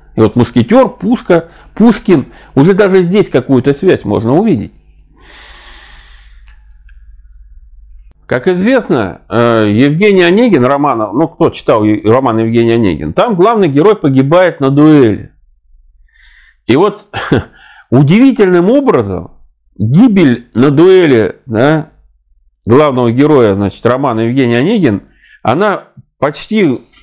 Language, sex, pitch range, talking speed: Russian, male, 105-175 Hz, 100 wpm